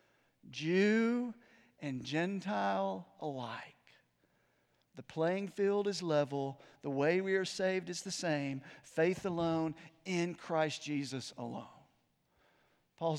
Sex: male